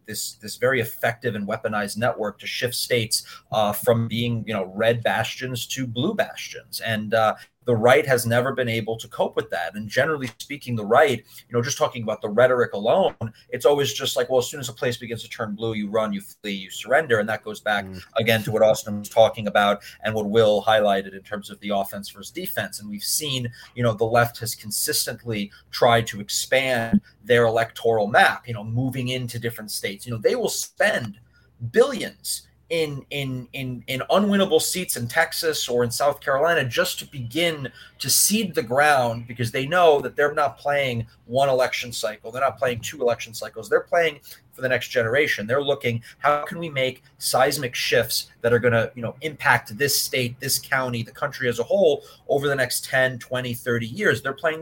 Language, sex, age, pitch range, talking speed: English, male, 30-49, 110-135 Hz, 205 wpm